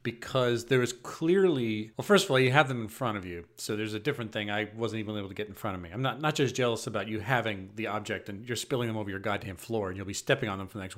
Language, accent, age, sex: English, American, 40-59, male